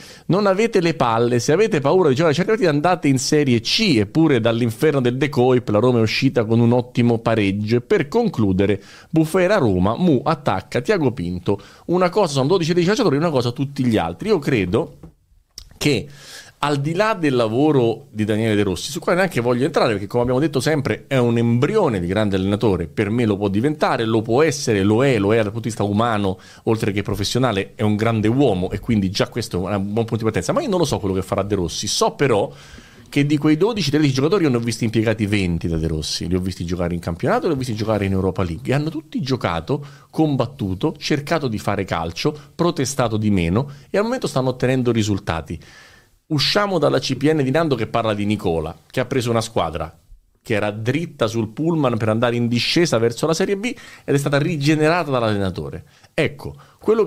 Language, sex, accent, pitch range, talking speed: Italian, male, native, 105-150 Hz, 205 wpm